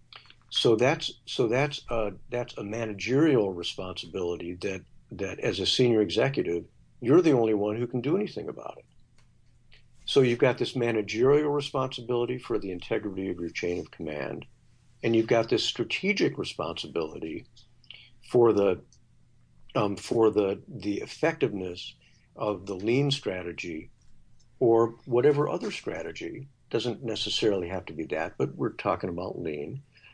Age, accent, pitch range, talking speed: 50-69, American, 100-120 Hz, 140 wpm